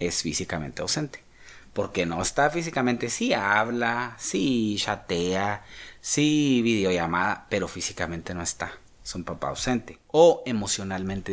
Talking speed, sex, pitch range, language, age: 120 wpm, male, 95-125 Hz, Spanish, 30-49